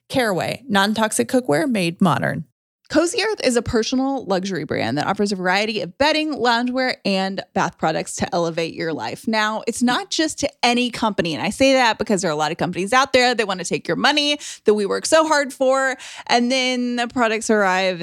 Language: English